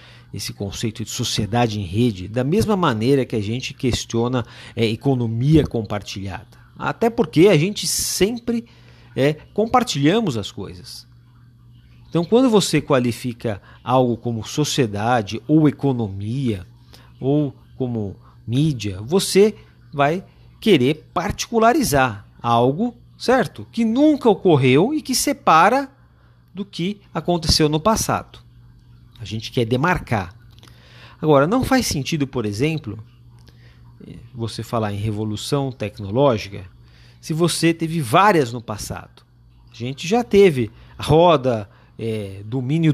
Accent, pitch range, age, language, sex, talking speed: Brazilian, 110-155 Hz, 50-69, Portuguese, male, 115 wpm